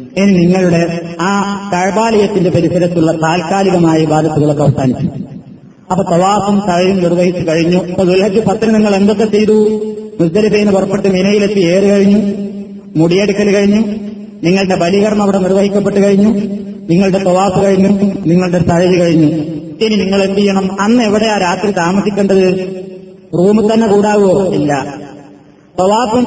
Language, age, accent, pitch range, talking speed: Malayalam, 20-39, native, 180-215 Hz, 115 wpm